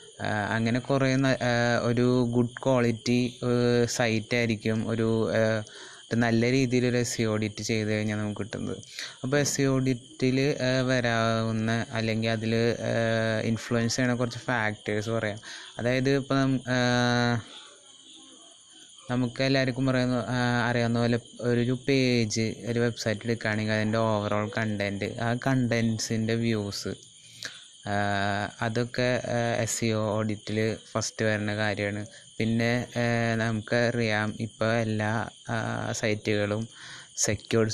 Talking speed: 95 wpm